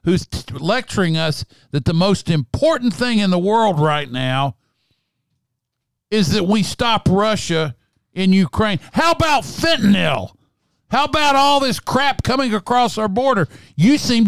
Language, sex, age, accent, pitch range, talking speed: English, male, 50-69, American, 140-220 Hz, 145 wpm